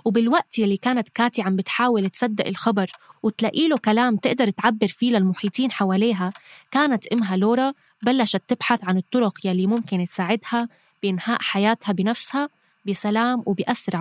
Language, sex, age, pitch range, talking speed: Arabic, female, 20-39, 195-250 Hz, 135 wpm